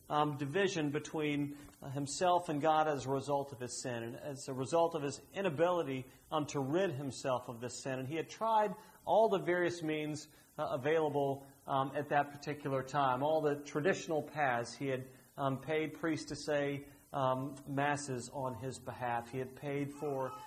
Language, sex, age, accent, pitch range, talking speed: English, male, 40-59, American, 140-170 Hz, 175 wpm